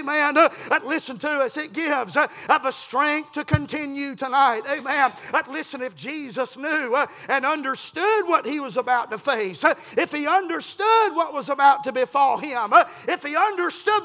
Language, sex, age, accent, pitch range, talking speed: English, male, 40-59, American, 255-335 Hz, 180 wpm